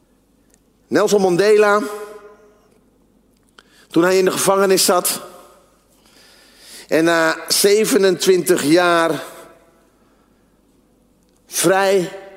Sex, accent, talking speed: male, Dutch, 65 wpm